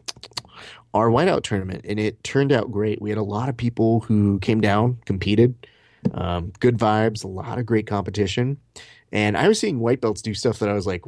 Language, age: English, 30-49